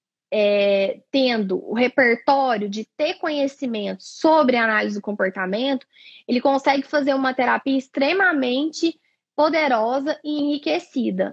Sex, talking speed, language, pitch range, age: female, 110 wpm, Portuguese, 230-295 Hz, 10-29